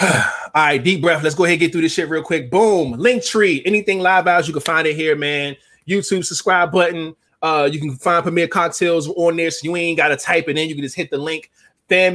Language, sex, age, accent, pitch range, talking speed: English, male, 20-39, American, 135-175 Hz, 250 wpm